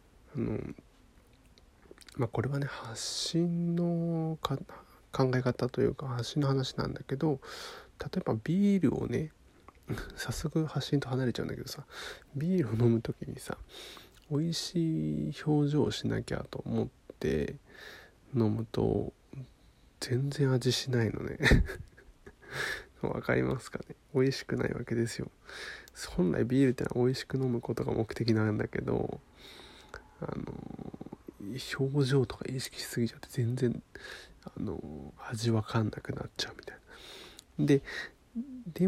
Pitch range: 120-160 Hz